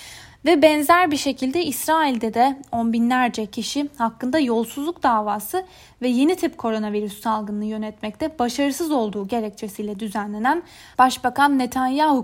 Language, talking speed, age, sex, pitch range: Turkish, 120 wpm, 10-29, female, 220-285 Hz